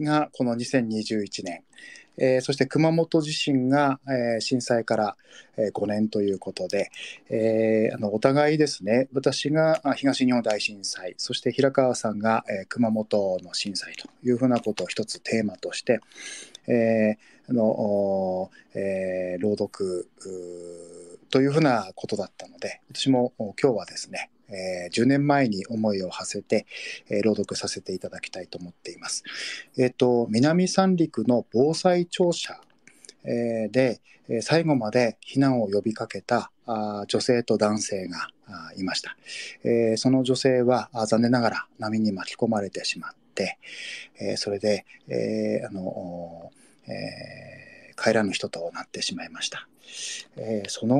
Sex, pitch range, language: male, 105-135 Hz, Japanese